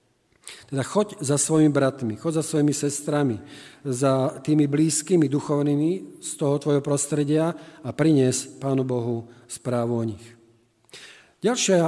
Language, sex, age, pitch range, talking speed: Slovak, male, 40-59, 145-165 Hz, 125 wpm